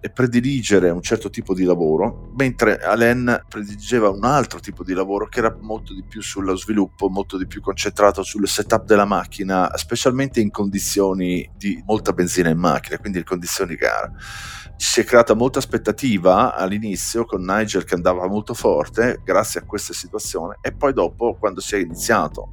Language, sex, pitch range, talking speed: Italian, male, 90-110 Hz, 175 wpm